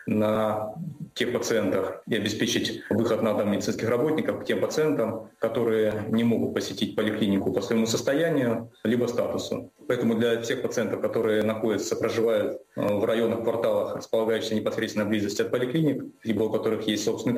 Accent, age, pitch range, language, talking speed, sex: native, 30-49, 110-125 Hz, Russian, 150 wpm, male